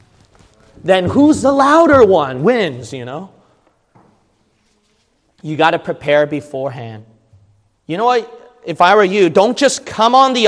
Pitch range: 125-180 Hz